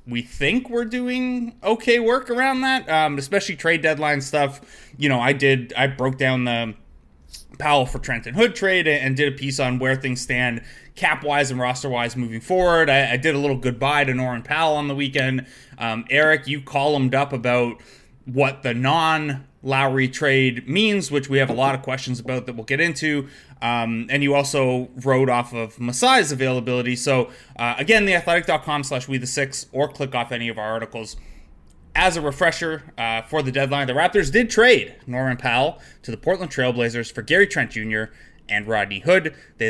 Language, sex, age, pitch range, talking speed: English, male, 20-39, 125-155 Hz, 185 wpm